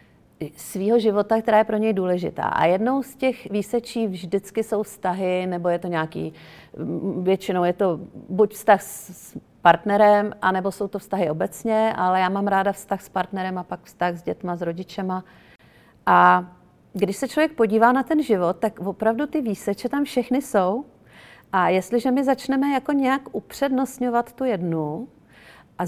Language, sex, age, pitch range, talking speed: Czech, female, 40-59, 185-230 Hz, 160 wpm